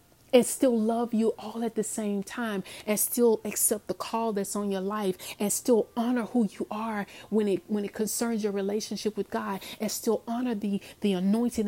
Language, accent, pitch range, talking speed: English, American, 200-235 Hz, 200 wpm